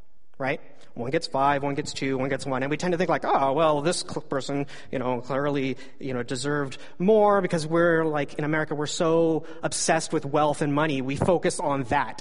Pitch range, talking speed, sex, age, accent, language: 140-185 Hz, 210 wpm, male, 30-49, American, English